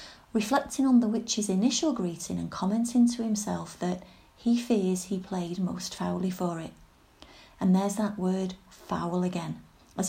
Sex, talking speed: female, 155 wpm